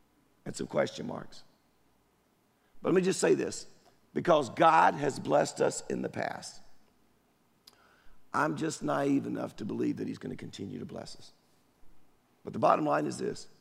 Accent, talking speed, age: American, 170 wpm, 50-69